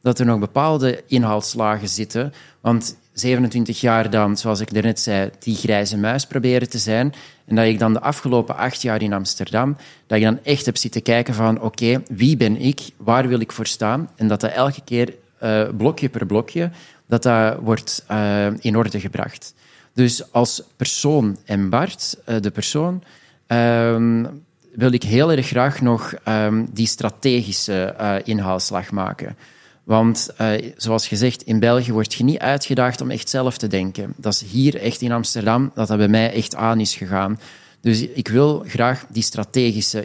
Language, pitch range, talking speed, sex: Dutch, 110-130 Hz, 180 wpm, male